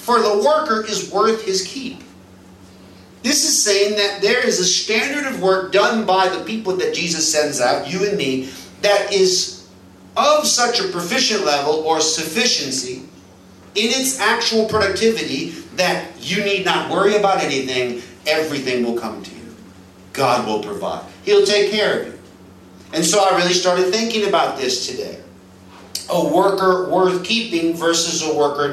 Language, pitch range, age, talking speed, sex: English, 120-200 Hz, 40-59, 160 wpm, male